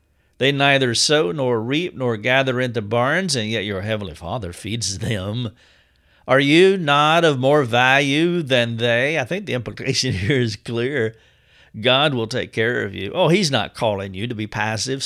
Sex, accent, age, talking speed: male, American, 50-69, 180 wpm